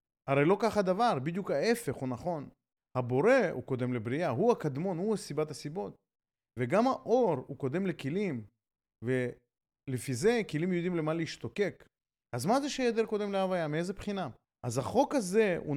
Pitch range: 130-200 Hz